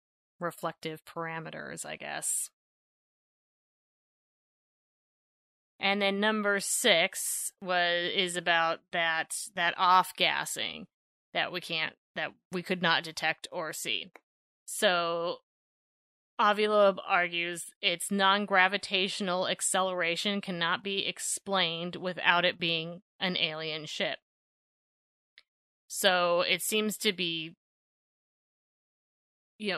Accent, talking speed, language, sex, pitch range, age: American, 95 wpm, English, female, 165-190 Hz, 30-49